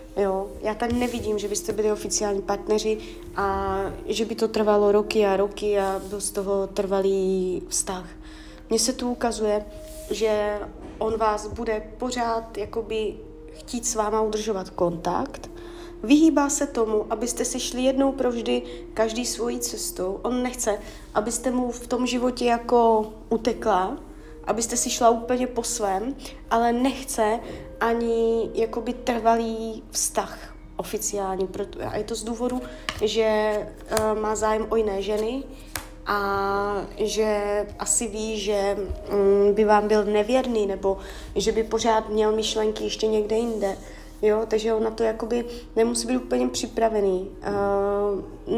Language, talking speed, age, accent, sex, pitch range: Czech, 135 wpm, 20-39, native, female, 200-235 Hz